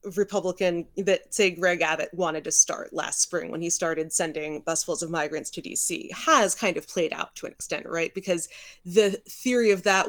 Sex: female